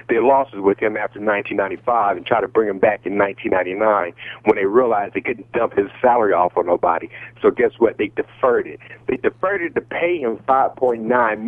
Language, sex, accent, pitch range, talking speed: English, male, American, 120-175 Hz, 200 wpm